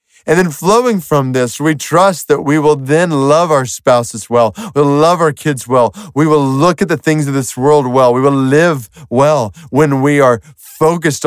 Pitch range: 110-145 Hz